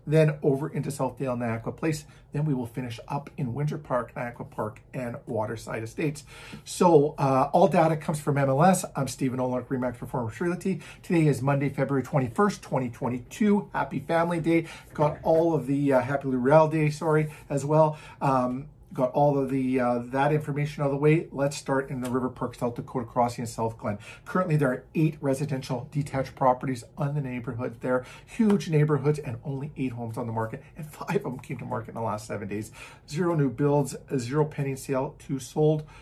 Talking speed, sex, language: 195 wpm, male, English